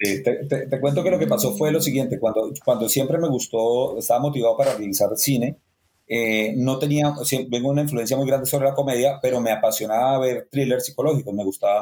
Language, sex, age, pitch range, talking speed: Spanish, male, 30-49, 110-140 Hz, 225 wpm